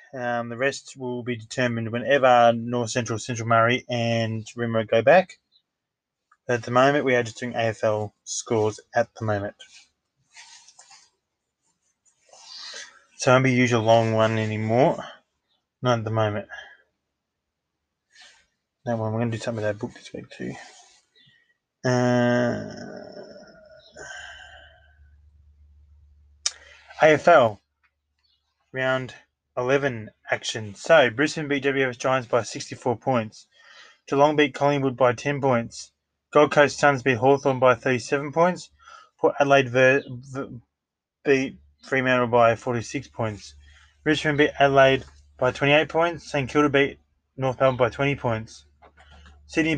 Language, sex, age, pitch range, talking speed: English, male, 20-39, 110-140 Hz, 125 wpm